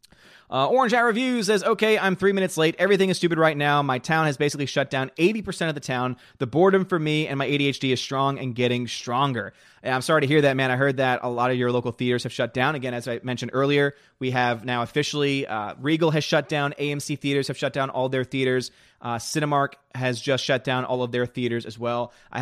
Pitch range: 125-160 Hz